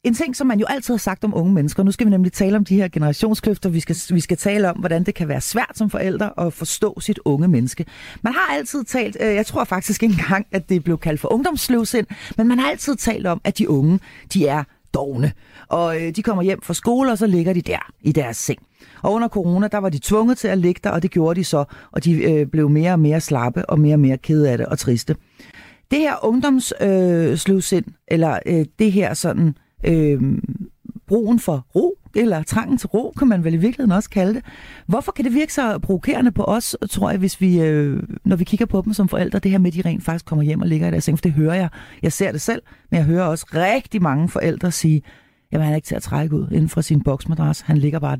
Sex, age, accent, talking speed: female, 40-59, native, 255 wpm